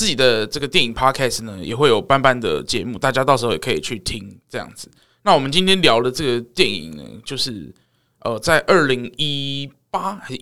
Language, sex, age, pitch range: Chinese, male, 20-39, 125-155 Hz